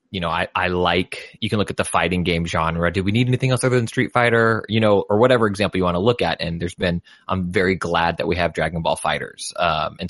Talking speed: 275 wpm